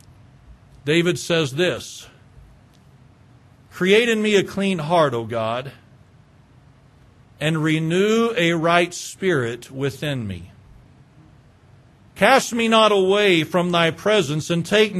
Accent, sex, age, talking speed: American, male, 50-69, 110 wpm